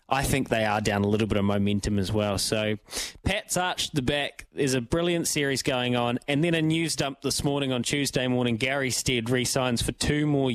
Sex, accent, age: male, Australian, 20-39